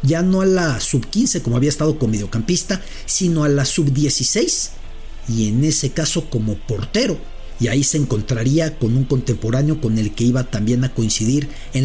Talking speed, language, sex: 175 wpm, English, male